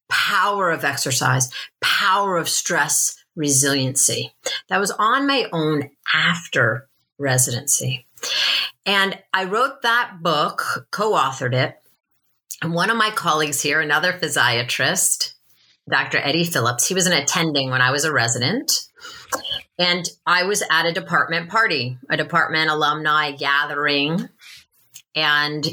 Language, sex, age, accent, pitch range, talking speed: English, female, 30-49, American, 150-220 Hz, 125 wpm